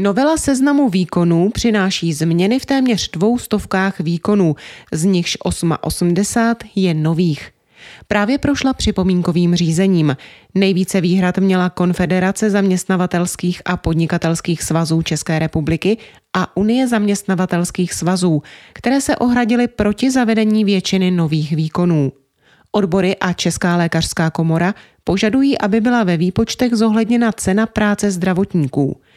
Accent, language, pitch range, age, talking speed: native, Czech, 165-215 Hz, 30-49, 115 wpm